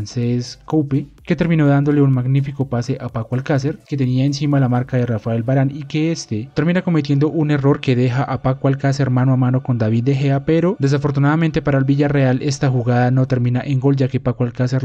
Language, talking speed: Spanish, 215 wpm